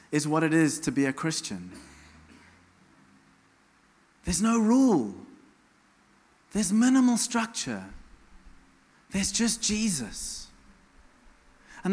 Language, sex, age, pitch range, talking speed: English, male, 30-49, 155-260 Hz, 90 wpm